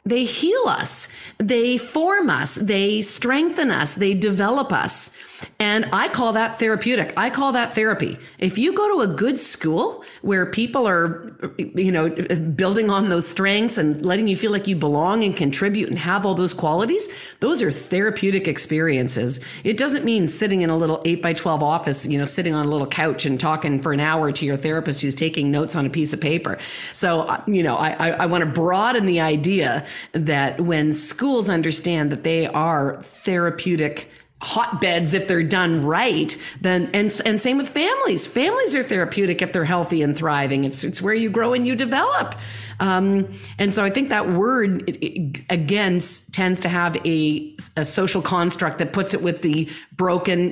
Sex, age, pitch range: female, 40-59, 155-215 Hz